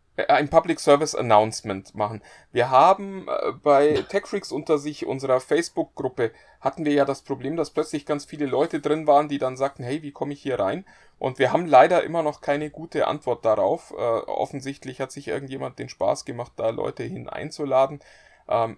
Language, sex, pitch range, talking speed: German, male, 140-160 Hz, 180 wpm